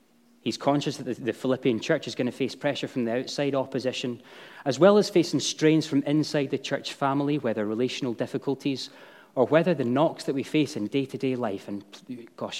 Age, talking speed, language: 20-39, 190 wpm, English